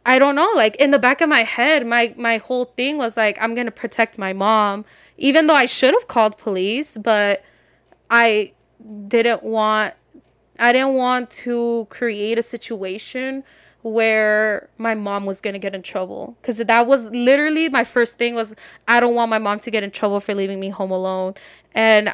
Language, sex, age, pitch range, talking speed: English, female, 10-29, 215-245 Hz, 195 wpm